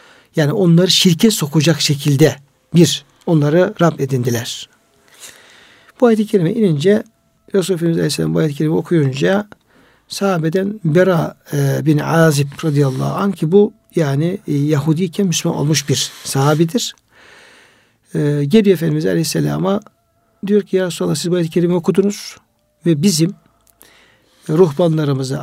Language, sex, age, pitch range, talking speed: Turkish, male, 60-79, 155-200 Hz, 120 wpm